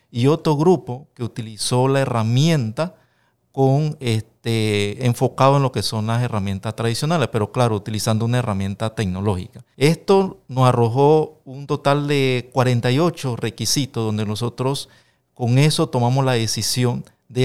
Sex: male